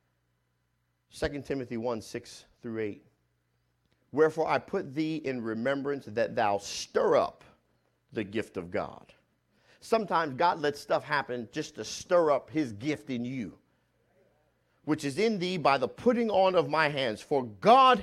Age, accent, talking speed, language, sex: 50-69, American, 155 wpm, English, male